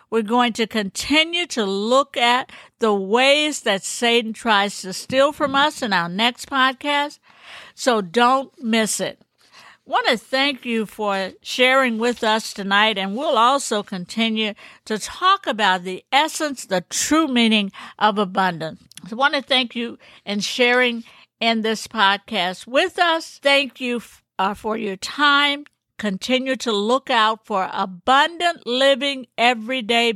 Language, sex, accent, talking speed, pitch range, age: English, female, American, 150 wpm, 210-265 Hz, 60-79